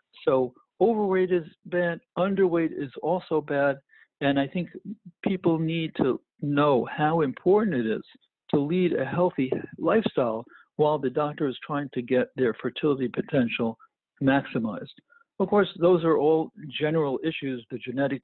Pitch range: 130-180 Hz